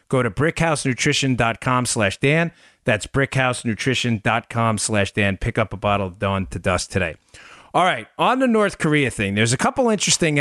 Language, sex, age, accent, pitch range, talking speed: English, male, 30-49, American, 110-145 Hz, 165 wpm